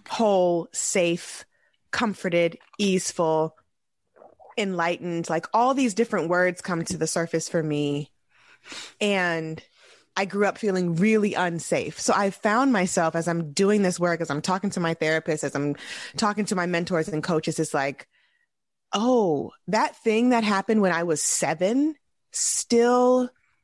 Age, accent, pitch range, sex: 20-39, American, 165-215 Hz, female